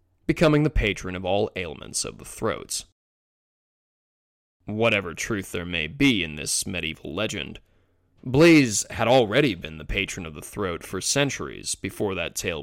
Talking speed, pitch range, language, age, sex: 150 wpm, 95-130 Hz, English, 20-39, male